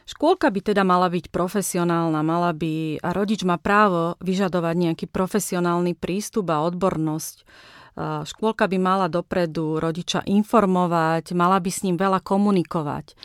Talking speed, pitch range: 135 wpm, 165-200 Hz